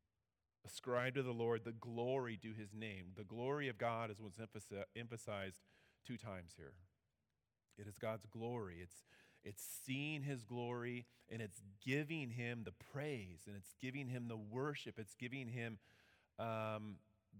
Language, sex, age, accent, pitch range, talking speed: English, male, 30-49, American, 105-130 Hz, 150 wpm